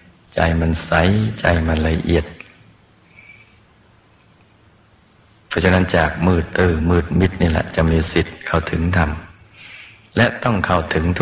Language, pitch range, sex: Thai, 85-105 Hz, male